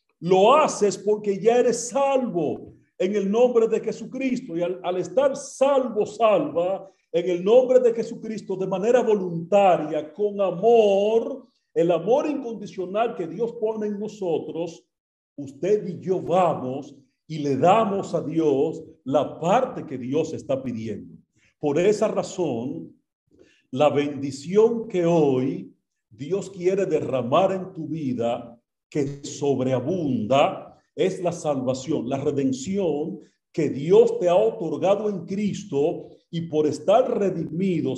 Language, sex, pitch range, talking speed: Spanish, male, 145-210 Hz, 130 wpm